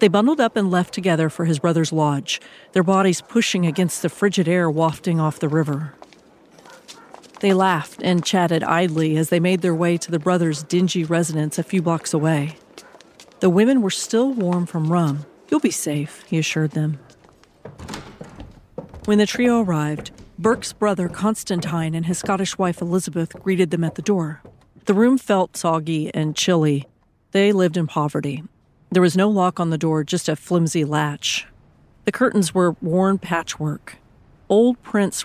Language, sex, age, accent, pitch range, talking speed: English, female, 40-59, American, 160-190 Hz, 165 wpm